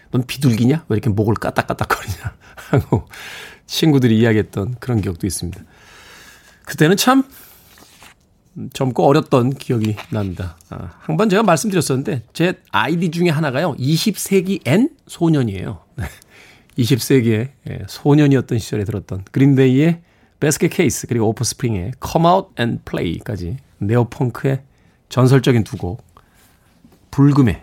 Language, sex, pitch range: Korean, male, 105-160 Hz